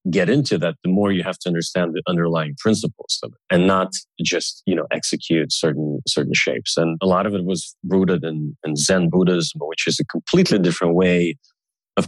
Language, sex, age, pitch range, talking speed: English, male, 30-49, 85-100 Hz, 205 wpm